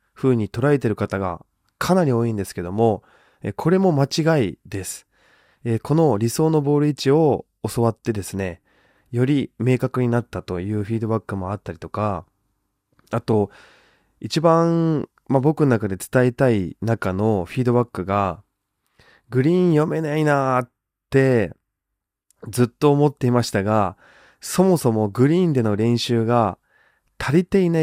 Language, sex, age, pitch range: Japanese, male, 20-39, 105-145 Hz